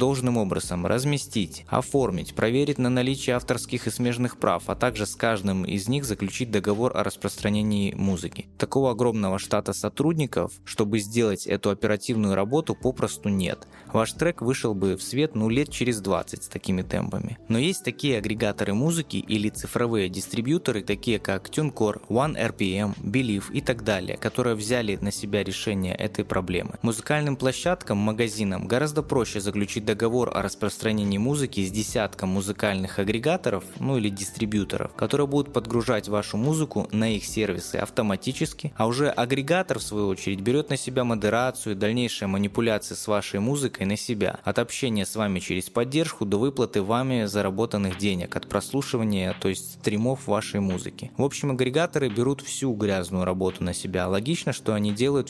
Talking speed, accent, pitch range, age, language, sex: 155 wpm, native, 100-125 Hz, 20-39, Russian, male